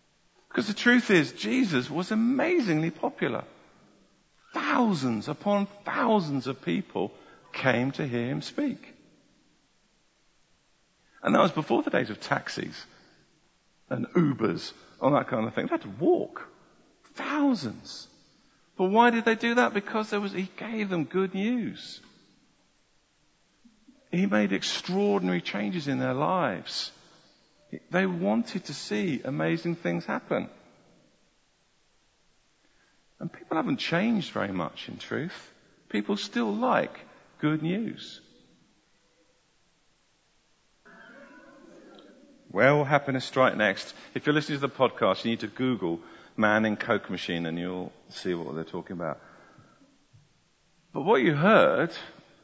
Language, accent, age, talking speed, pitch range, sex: English, British, 50-69, 125 wpm, 135-225 Hz, male